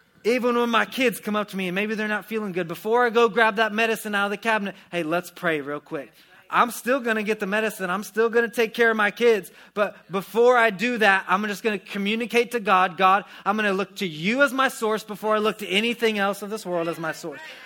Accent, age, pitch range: American, 30-49, 175-215 Hz